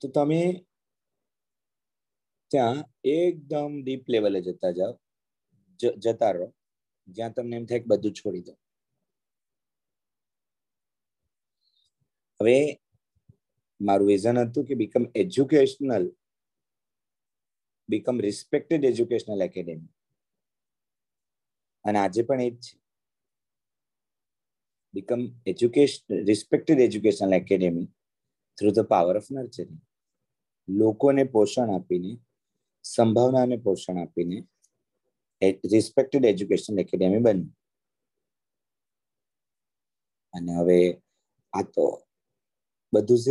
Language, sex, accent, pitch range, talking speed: English, male, Indian, 95-130 Hz, 60 wpm